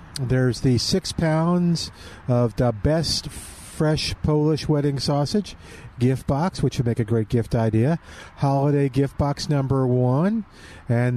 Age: 50-69